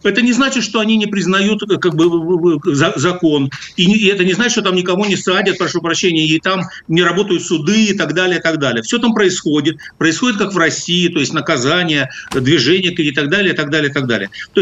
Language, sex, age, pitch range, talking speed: Russian, male, 60-79, 155-200 Hz, 210 wpm